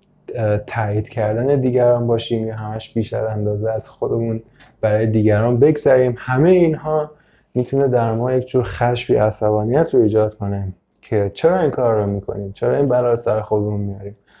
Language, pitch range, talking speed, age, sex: Persian, 105-125 Hz, 155 wpm, 20-39, male